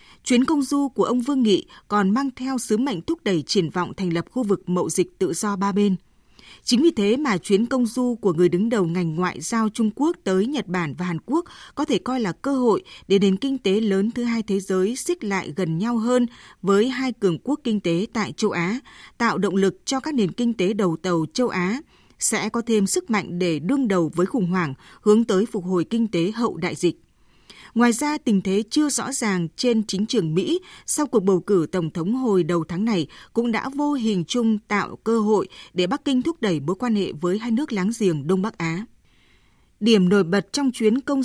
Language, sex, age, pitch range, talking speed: Vietnamese, female, 20-39, 180-245 Hz, 235 wpm